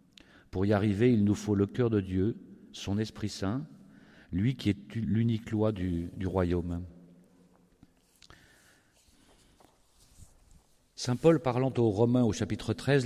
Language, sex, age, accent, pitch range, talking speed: French, male, 50-69, French, 95-120 Hz, 135 wpm